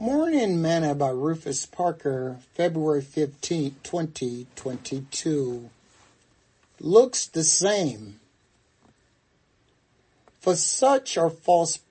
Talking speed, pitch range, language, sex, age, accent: 75 wpm, 125-160 Hz, English, male, 60-79, American